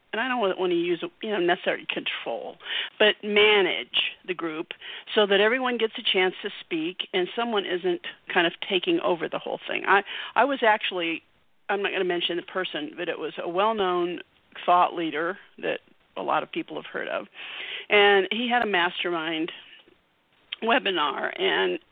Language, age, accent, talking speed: English, 50-69, American, 180 wpm